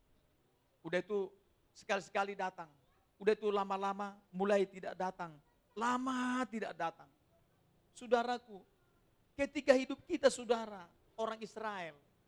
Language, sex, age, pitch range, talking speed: Indonesian, male, 40-59, 160-220 Hz, 100 wpm